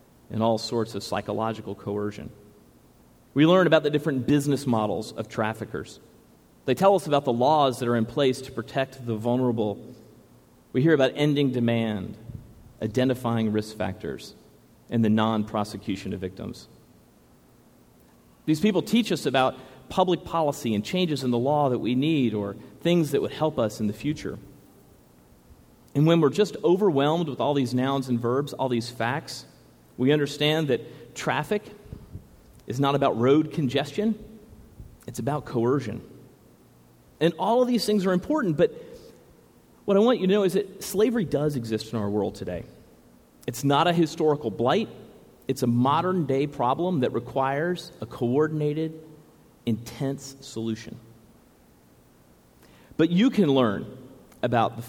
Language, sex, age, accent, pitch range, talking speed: English, male, 40-59, American, 115-155 Hz, 150 wpm